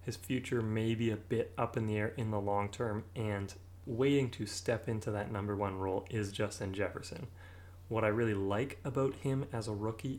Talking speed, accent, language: 205 wpm, American, English